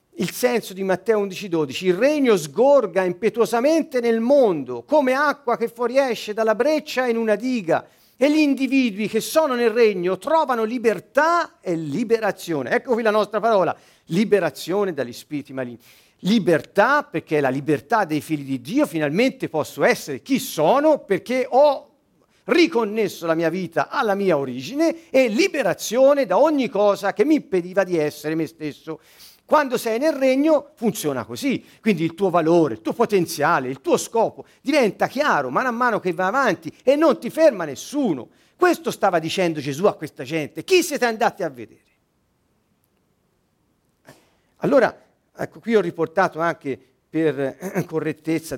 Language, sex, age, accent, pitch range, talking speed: Italian, male, 50-69, native, 155-255 Hz, 155 wpm